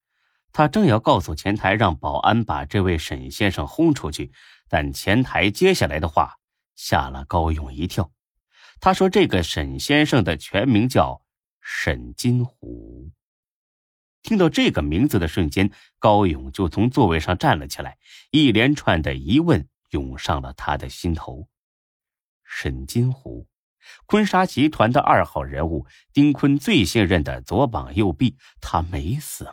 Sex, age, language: male, 30-49, Chinese